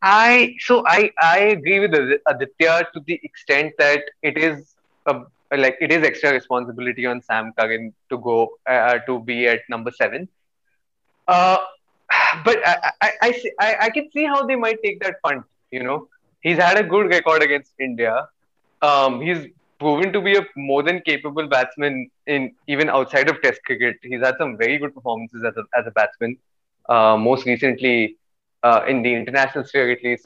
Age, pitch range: 20-39, 130-185 Hz